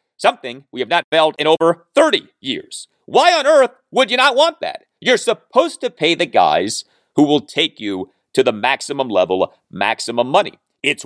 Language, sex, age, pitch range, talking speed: English, male, 40-59, 130-215 Hz, 185 wpm